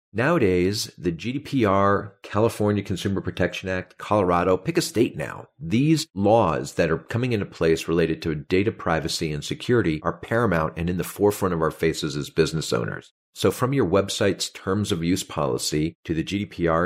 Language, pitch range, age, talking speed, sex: English, 80-100 Hz, 50-69, 170 wpm, male